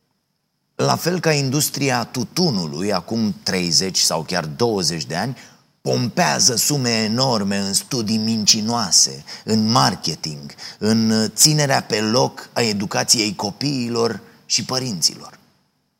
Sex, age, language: male, 30-49, Romanian